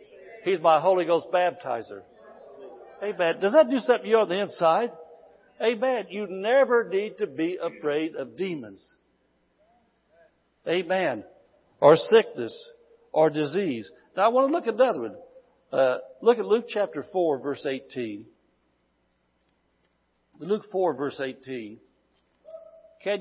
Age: 60-79